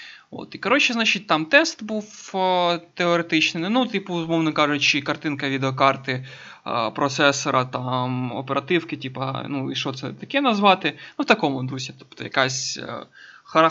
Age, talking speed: 20-39, 140 wpm